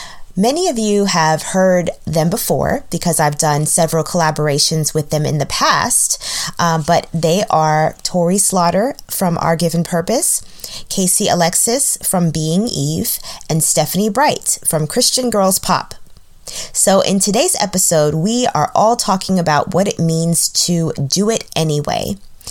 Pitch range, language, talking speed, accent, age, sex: 155-195 Hz, English, 145 wpm, American, 20-39, female